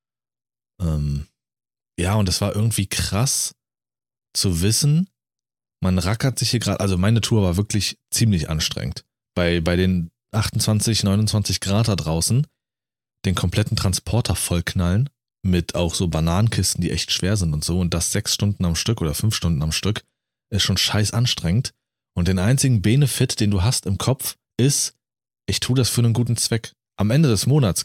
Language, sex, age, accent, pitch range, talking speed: German, male, 30-49, German, 90-120 Hz, 170 wpm